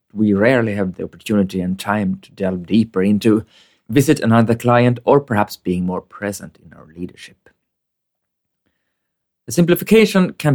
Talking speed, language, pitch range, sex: 140 wpm, English, 95-135 Hz, male